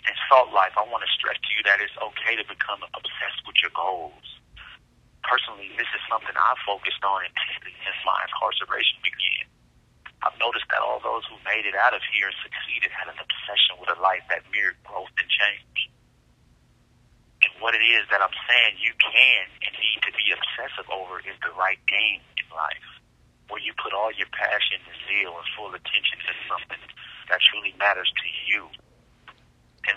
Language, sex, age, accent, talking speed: English, male, 40-59, American, 185 wpm